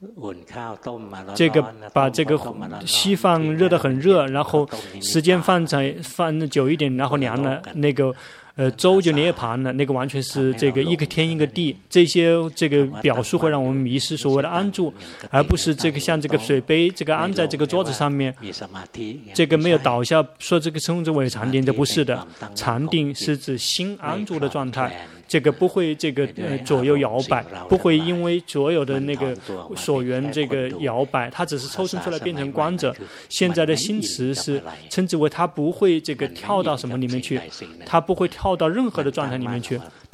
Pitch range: 130-165 Hz